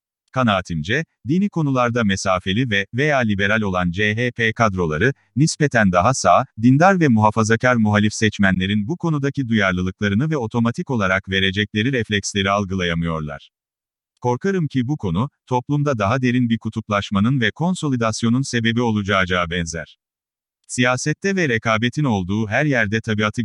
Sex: male